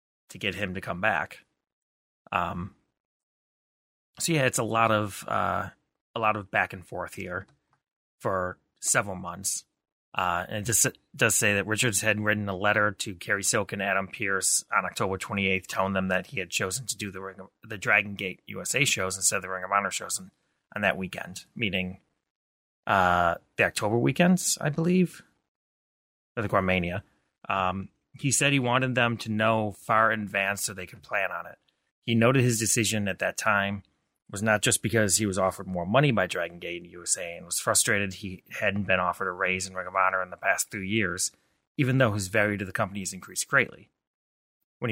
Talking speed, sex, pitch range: 200 wpm, male, 95-110 Hz